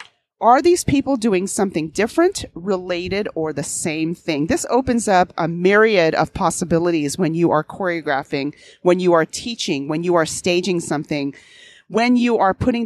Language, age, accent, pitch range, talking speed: English, 40-59, American, 170-235 Hz, 165 wpm